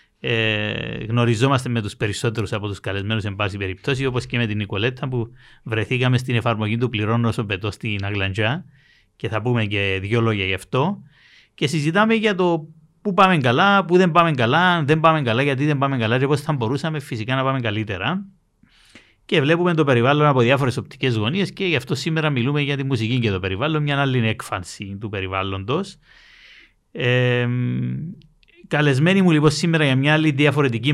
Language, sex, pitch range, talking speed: Greek, male, 115-170 Hz, 175 wpm